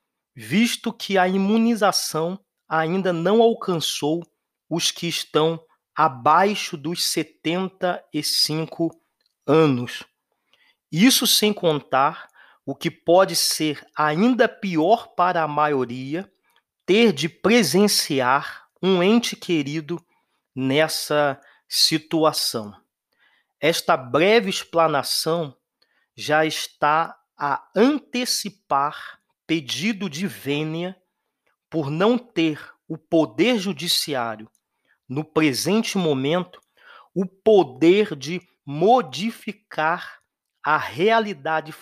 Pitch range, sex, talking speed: 150-195 Hz, male, 85 wpm